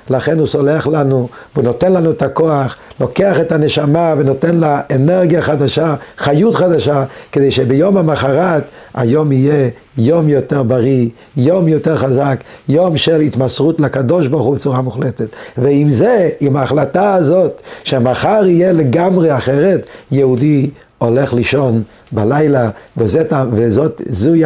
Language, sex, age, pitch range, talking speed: Hebrew, male, 60-79, 130-160 Hz, 125 wpm